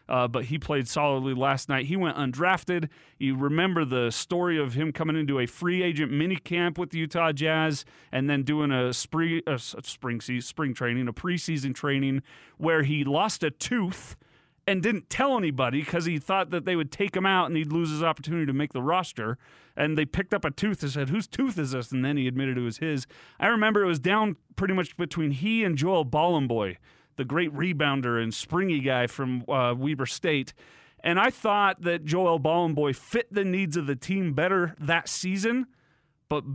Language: English